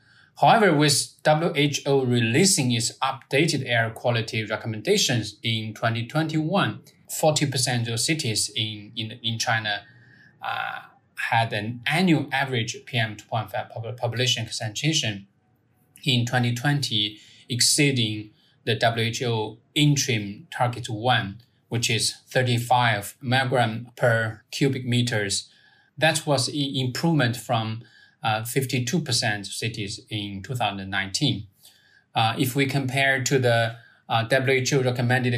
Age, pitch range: 20-39, 110-135 Hz